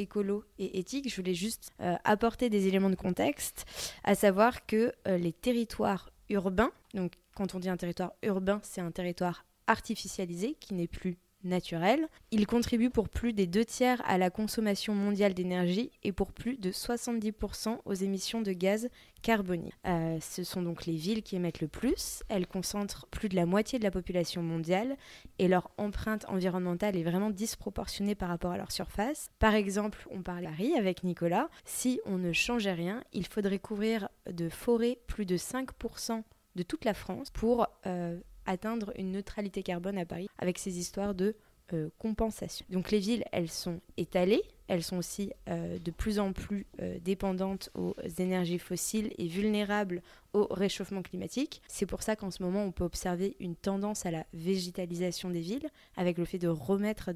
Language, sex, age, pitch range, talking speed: French, female, 20-39, 180-220 Hz, 180 wpm